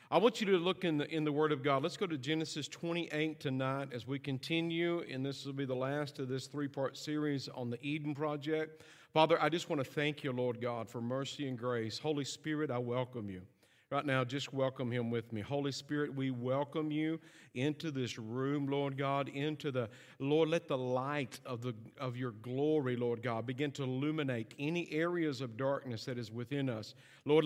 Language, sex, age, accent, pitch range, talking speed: English, male, 50-69, American, 125-150 Hz, 210 wpm